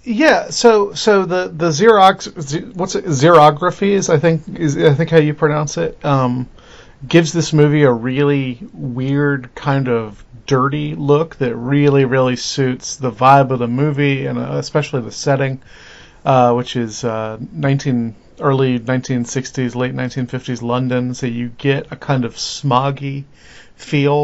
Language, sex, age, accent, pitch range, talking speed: English, male, 40-59, American, 125-150 Hz, 150 wpm